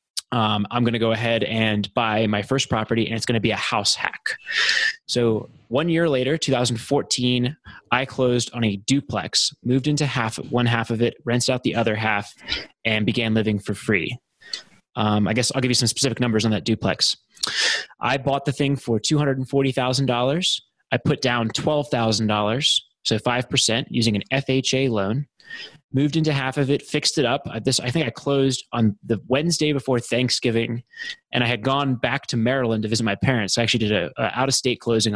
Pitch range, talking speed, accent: 110-135 Hz, 190 wpm, American